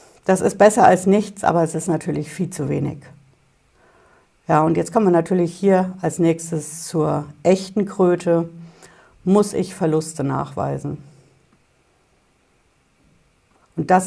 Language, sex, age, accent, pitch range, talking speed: German, female, 60-79, German, 160-200 Hz, 130 wpm